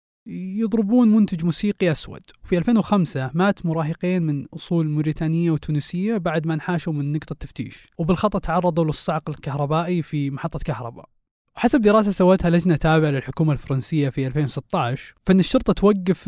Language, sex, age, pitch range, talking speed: Arabic, male, 20-39, 145-185 Hz, 135 wpm